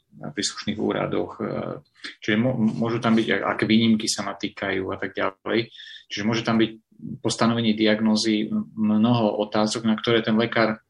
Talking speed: 150 wpm